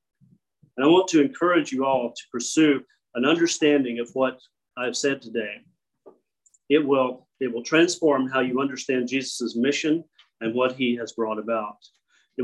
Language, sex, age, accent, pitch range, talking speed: English, male, 40-59, American, 115-145 Hz, 155 wpm